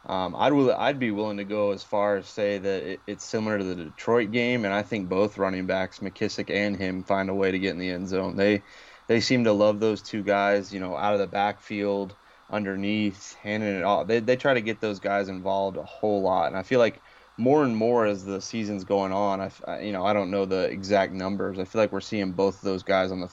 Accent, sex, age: American, male, 20-39